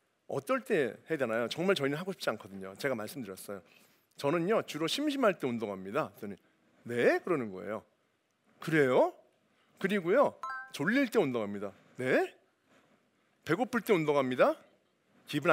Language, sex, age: Korean, male, 40-59